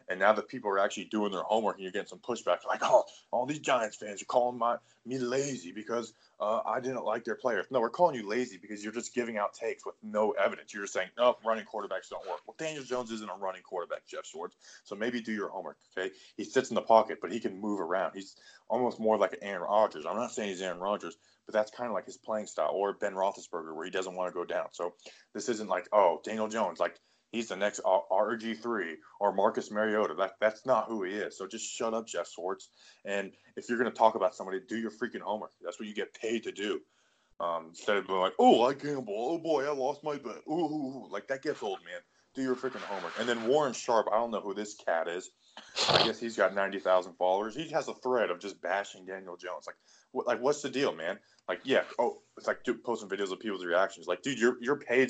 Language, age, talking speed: English, 20-39, 250 wpm